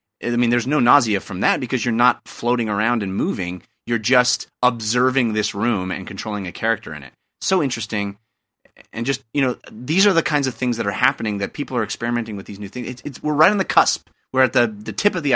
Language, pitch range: English, 105-150 Hz